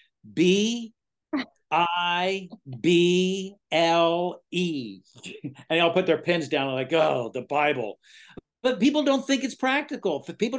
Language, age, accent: English, 60-79, American